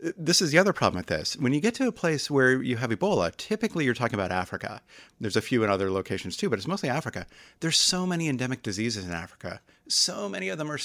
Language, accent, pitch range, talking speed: English, American, 100-135 Hz, 250 wpm